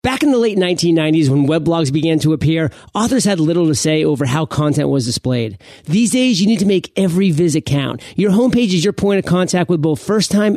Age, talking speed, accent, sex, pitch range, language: 40-59, 225 wpm, American, male, 150-195 Hz, English